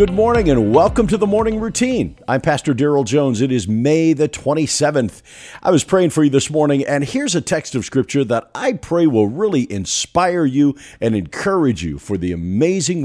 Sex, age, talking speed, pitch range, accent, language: male, 50-69, 200 wpm, 95-150 Hz, American, English